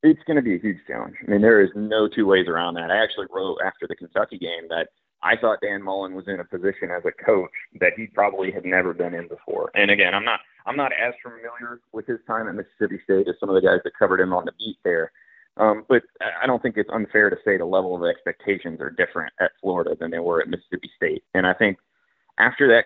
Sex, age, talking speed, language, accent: male, 30-49, 255 wpm, English, American